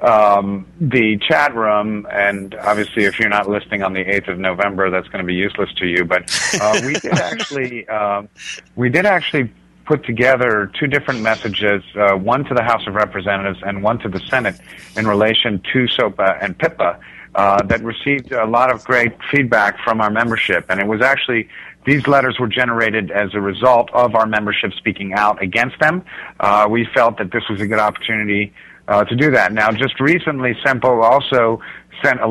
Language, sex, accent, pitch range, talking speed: English, male, American, 105-125 Hz, 190 wpm